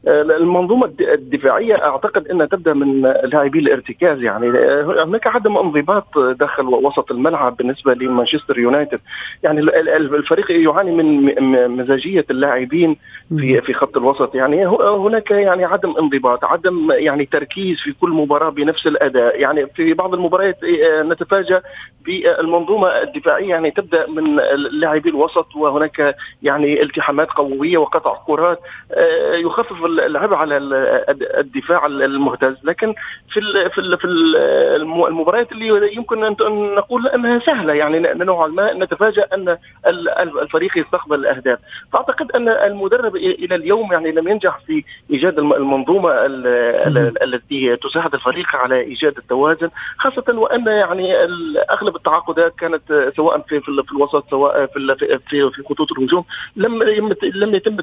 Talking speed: 120 wpm